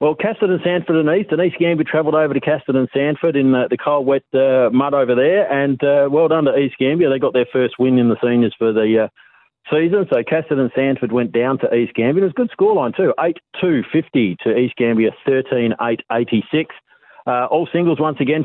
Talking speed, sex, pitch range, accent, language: 220 wpm, male, 115-140 Hz, Australian, English